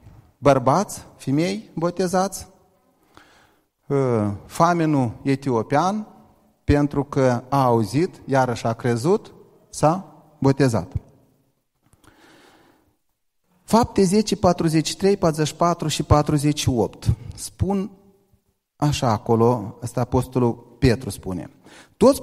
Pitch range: 135-185 Hz